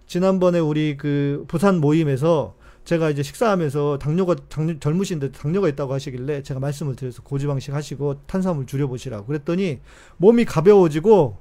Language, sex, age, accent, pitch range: Korean, male, 40-59, native, 135-170 Hz